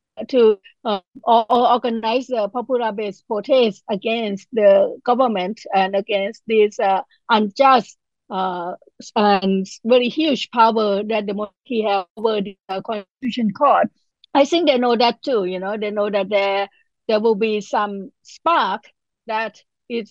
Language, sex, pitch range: English, female, 205-255 Hz